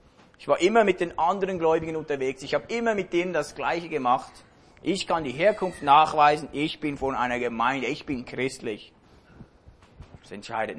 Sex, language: male, English